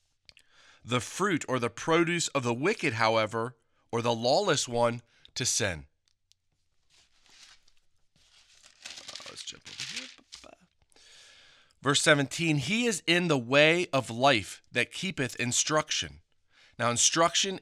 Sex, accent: male, American